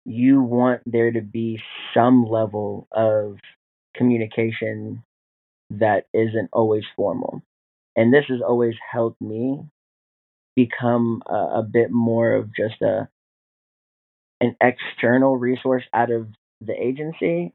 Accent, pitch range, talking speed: American, 110-125 Hz, 115 wpm